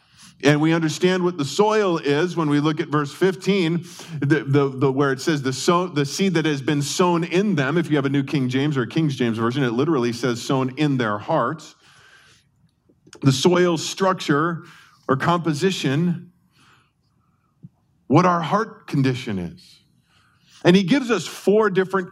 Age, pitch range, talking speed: 40-59, 145-185 Hz, 175 wpm